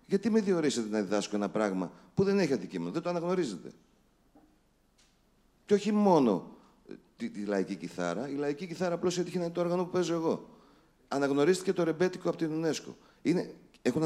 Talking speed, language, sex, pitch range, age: 180 wpm, Greek, male, 105-180 Hz, 40-59